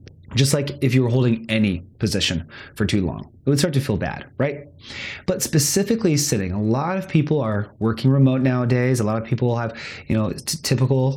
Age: 30-49